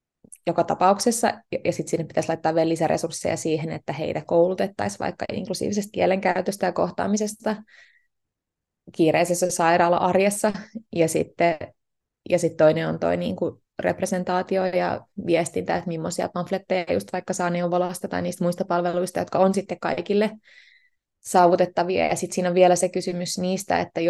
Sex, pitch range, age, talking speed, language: female, 175-200 Hz, 20-39, 135 wpm, Finnish